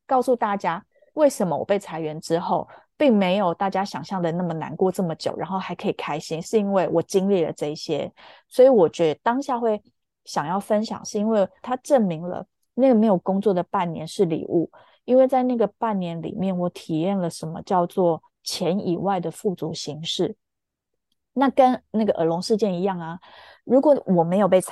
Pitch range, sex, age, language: 170-215 Hz, female, 30-49, English